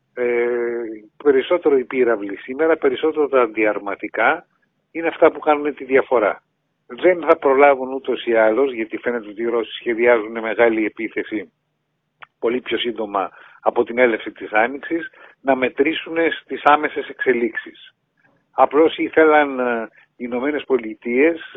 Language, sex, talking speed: Greek, male, 155 wpm